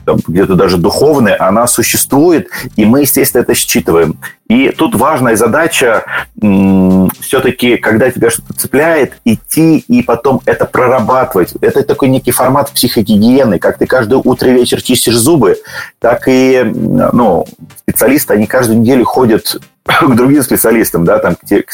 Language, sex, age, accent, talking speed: Russian, male, 30-49, native, 135 wpm